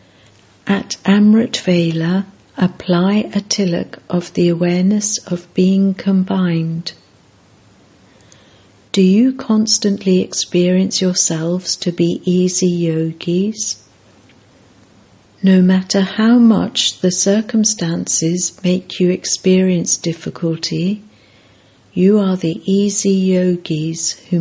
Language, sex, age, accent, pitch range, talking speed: English, female, 60-79, British, 135-195 Hz, 90 wpm